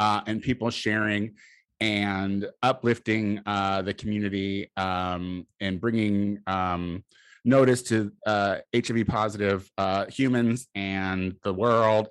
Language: English